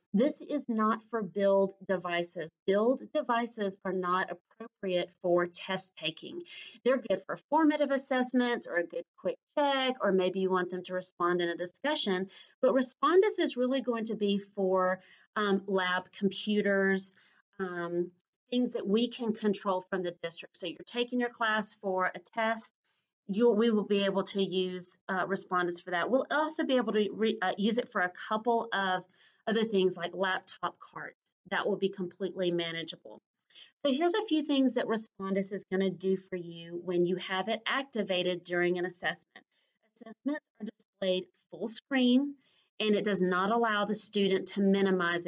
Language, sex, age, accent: English, female, 40-59, American